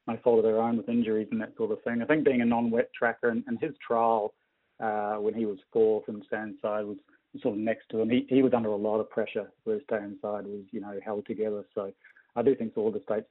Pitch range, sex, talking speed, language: 105-115 Hz, male, 265 wpm, English